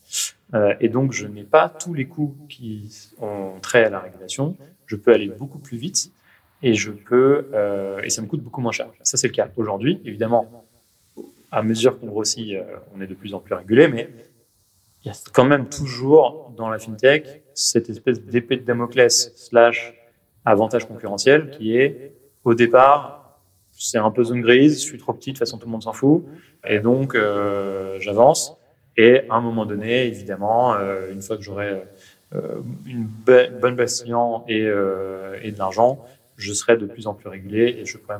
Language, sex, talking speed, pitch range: French, male, 190 wpm, 105-125 Hz